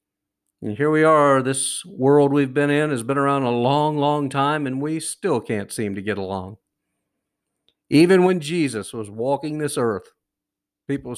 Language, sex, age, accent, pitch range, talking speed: English, male, 50-69, American, 110-150 Hz, 170 wpm